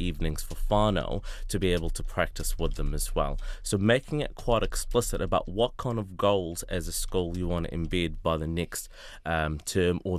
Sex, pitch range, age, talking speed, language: male, 85-100 Hz, 30-49, 205 wpm, English